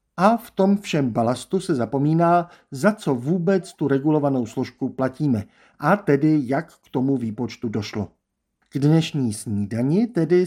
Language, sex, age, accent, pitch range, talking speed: Czech, male, 50-69, native, 125-175 Hz, 145 wpm